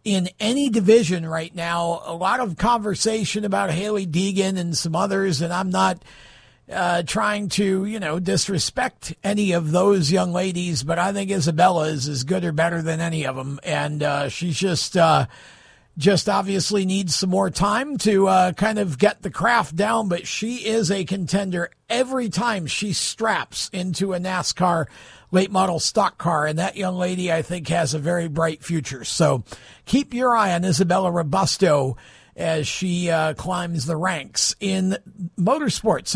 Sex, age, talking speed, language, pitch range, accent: male, 50-69, 175 wpm, English, 165-210 Hz, American